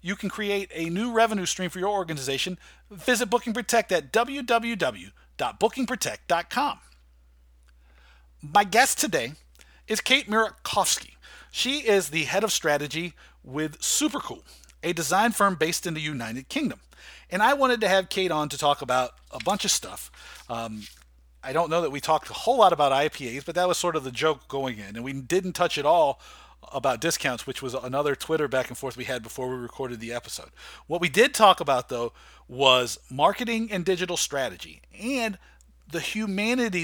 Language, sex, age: English, male, 40-59